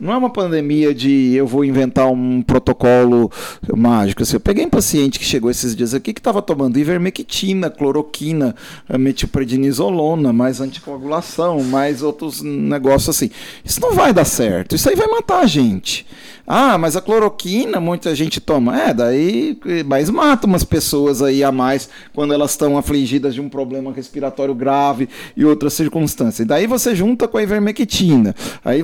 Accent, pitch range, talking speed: Brazilian, 140-215 Hz, 165 wpm